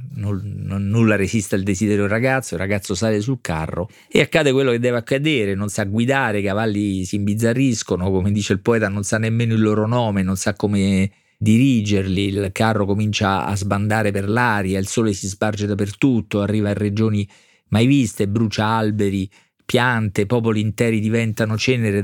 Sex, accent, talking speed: male, native, 170 wpm